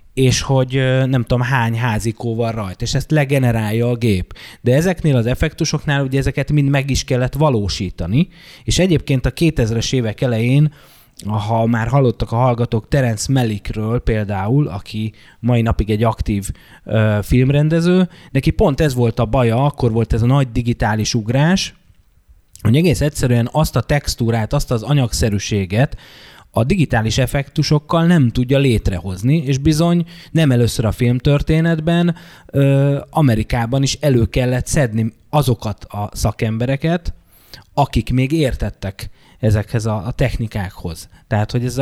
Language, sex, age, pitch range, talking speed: Hungarian, male, 20-39, 110-140 Hz, 140 wpm